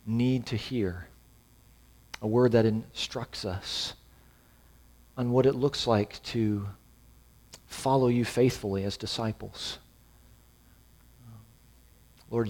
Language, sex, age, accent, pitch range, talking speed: English, male, 40-59, American, 110-130 Hz, 95 wpm